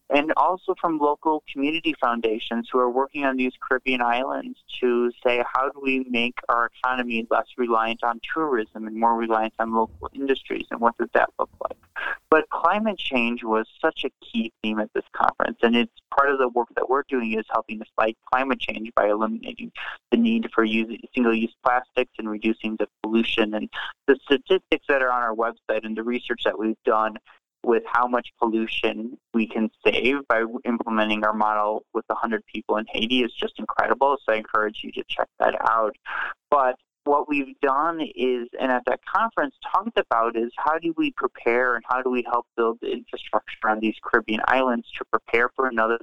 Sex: male